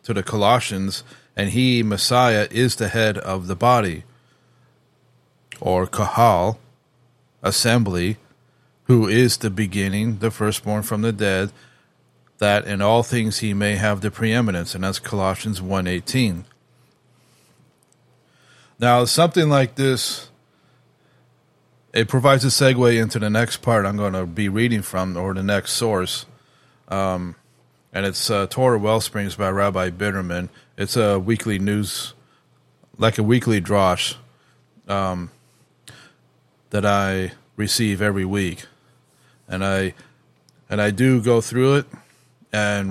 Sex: male